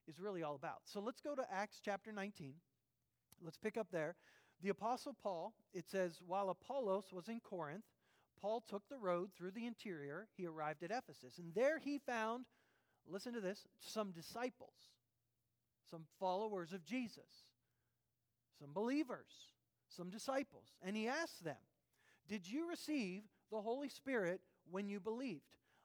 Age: 40-59